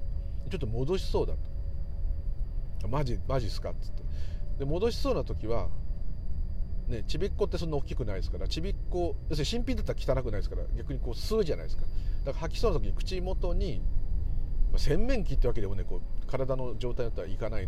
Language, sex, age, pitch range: Japanese, male, 40-59, 80-110 Hz